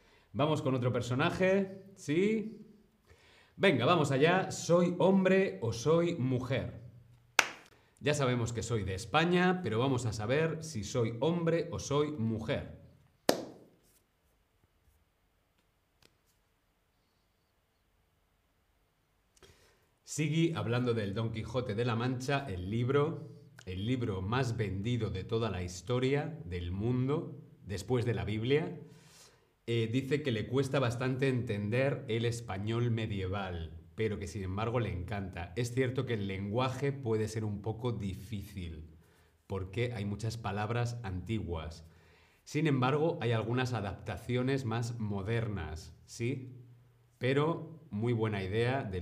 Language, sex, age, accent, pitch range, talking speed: Spanish, male, 40-59, Spanish, 100-135 Hz, 120 wpm